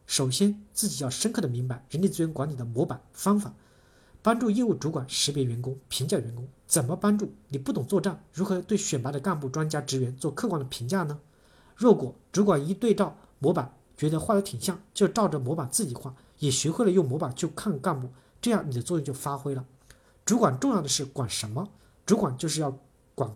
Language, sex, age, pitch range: Chinese, male, 50-69, 130-190 Hz